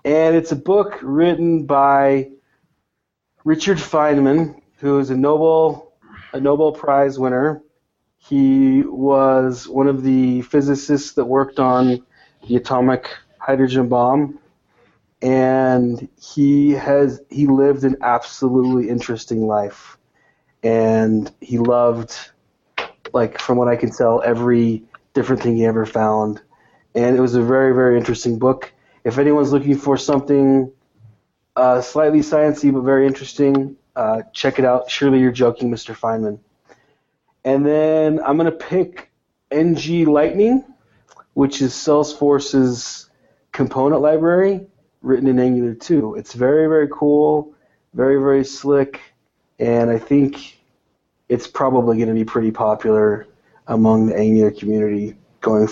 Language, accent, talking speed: English, American, 130 wpm